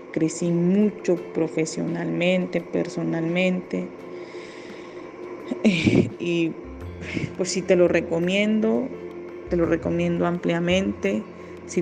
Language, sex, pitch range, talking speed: English, female, 160-180 Hz, 75 wpm